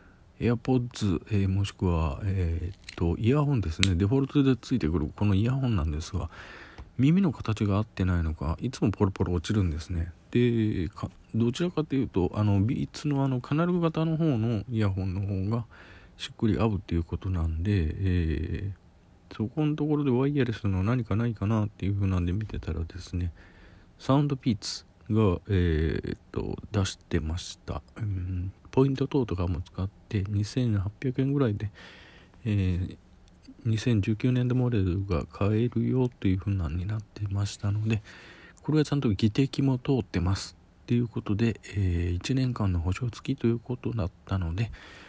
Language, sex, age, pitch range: Japanese, male, 40-59, 90-120 Hz